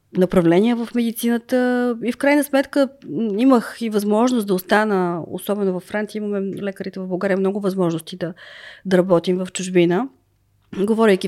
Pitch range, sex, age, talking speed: 190-225 Hz, female, 30-49, 145 wpm